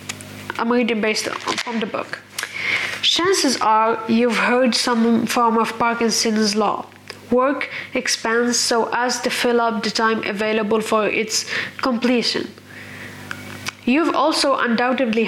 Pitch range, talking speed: 225-275 Hz, 125 wpm